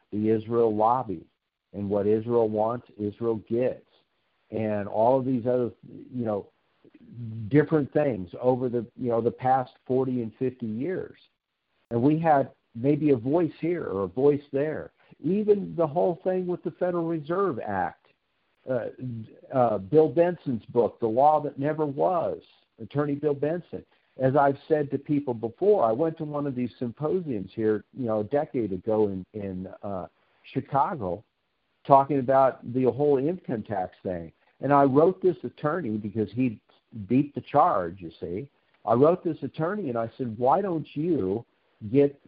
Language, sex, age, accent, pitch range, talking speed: English, male, 60-79, American, 110-155 Hz, 160 wpm